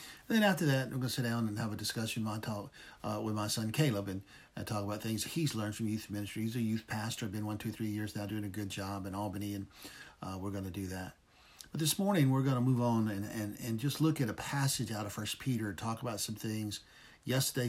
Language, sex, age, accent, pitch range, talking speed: English, male, 50-69, American, 105-120 Hz, 265 wpm